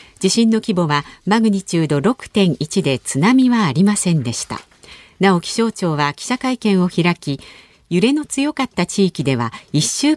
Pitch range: 155-230 Hz